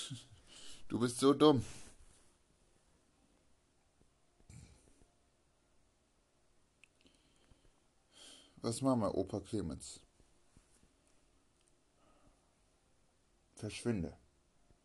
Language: German